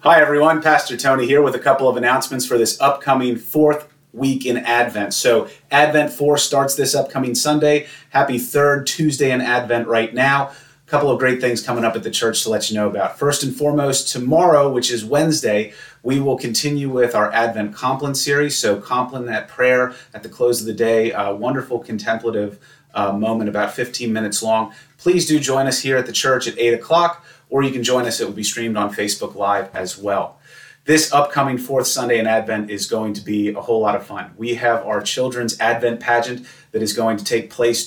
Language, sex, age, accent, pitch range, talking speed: English, male, 30-49, American, 115-140 Hz, 210 wpm